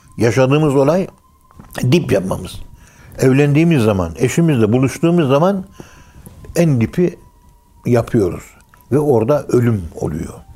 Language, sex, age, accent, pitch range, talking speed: Turkish, male, 60-79, native, 100-140 Hz, 90 wpm